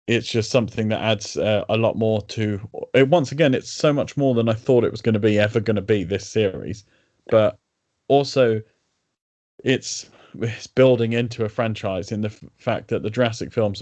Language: English